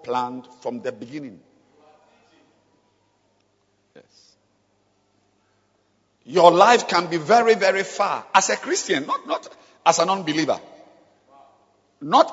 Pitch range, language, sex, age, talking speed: 145-215 Hz, English, male, 50-69, 95 wpm